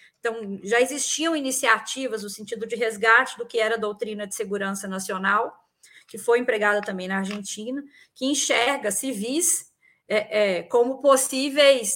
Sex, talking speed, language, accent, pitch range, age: female, 145 wpm, Portuguese, Brazilian, 225-290 Hz, 20-39